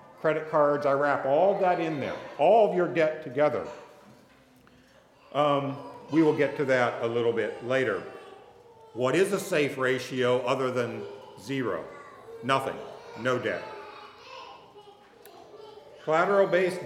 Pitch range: 130-160 Hz